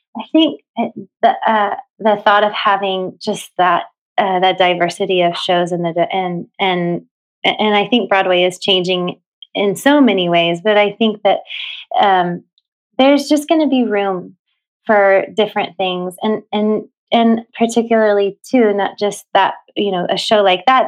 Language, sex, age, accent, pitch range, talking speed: English, female, 20-39, American, 175-210 Hz, 165 wpm